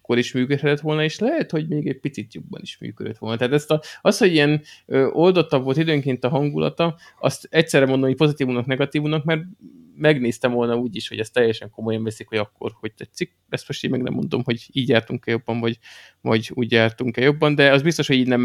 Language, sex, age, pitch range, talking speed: Hungarian, male, 20-39, 115-145 Hz, 220 wpm